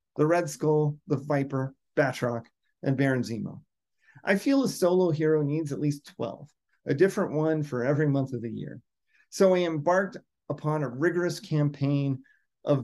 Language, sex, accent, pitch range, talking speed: English, male, American, 135-170 Hz, 165 wpm